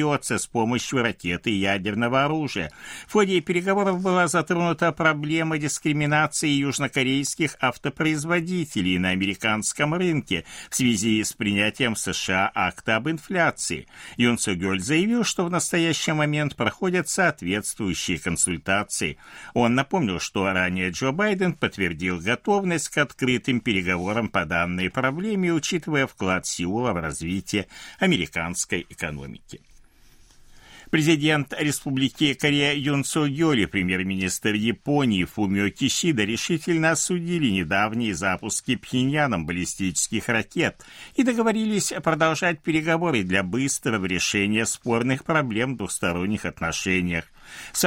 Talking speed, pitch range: 110 wpm, 95-160 Hz